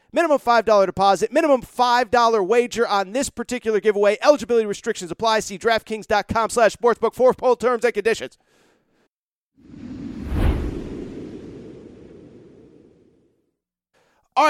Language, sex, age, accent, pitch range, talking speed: English, male, 30-49, American, 190-255 Hz, 95 wpm